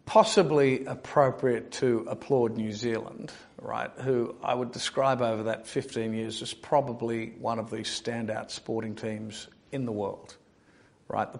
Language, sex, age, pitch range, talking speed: English, male, 50-69, 110-125 Hz, 145 wpm